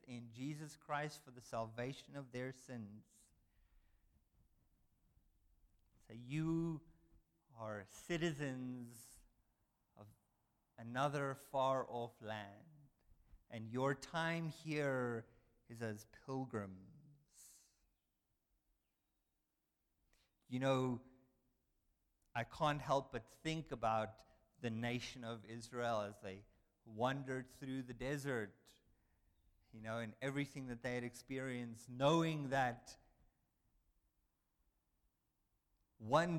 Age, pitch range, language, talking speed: 50-69, 110-145 Hz, English, 85 wpm